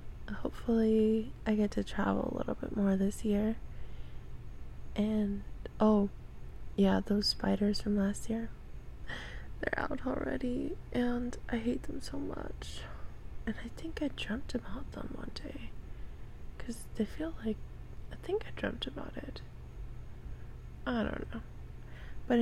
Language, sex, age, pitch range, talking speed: English, female, 20-39, 200-235 Hz, 135 wpm